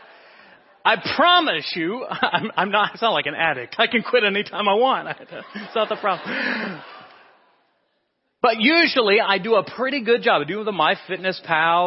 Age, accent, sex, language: 40-59, American, male, English